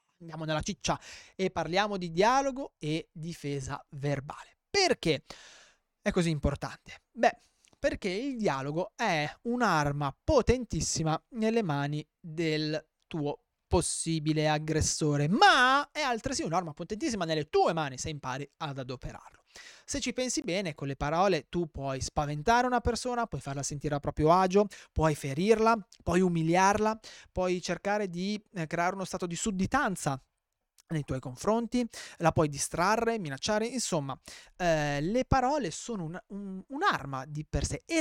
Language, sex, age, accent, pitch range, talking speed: Italian, male, 20-39, native, 145-210 Hz, 140 wpm